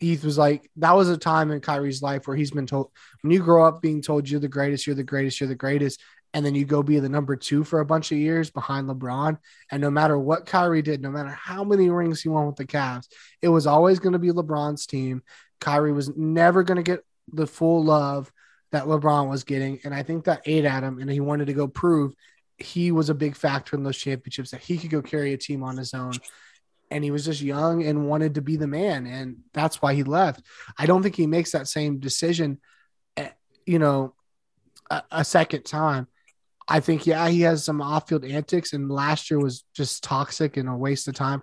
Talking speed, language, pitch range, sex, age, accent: 230 wpm, English, 140-160 Hz, male, 20-39, American